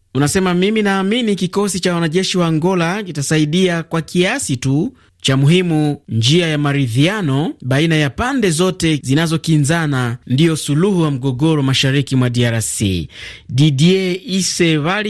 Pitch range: 130-170 Hz